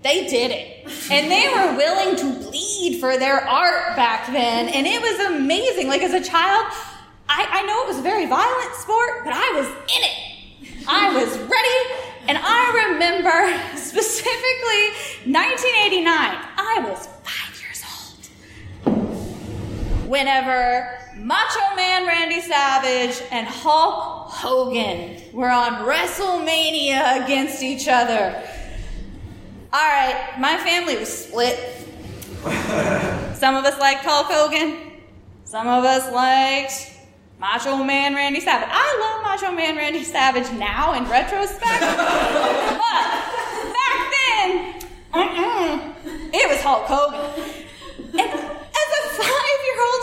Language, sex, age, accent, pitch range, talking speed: English, female, 10-29, American, 270-405 Hz, 125 wpm